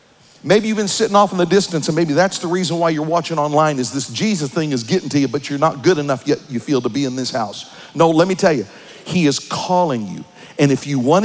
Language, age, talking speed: English, 50-69, 270 wpm